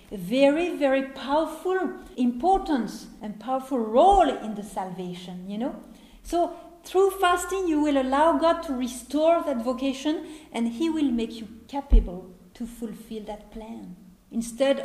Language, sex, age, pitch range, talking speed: English, female, 50-69, 205-295 Hz, 140 wpm